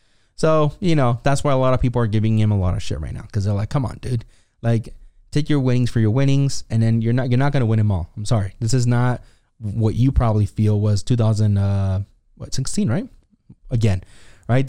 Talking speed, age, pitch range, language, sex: 240 wpm, 20-39, 105-120 Hz, English, male